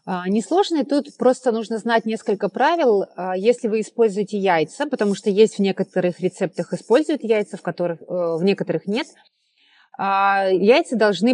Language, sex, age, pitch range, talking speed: Russian, female, 30-49, 185-235 Hz, 150 wpm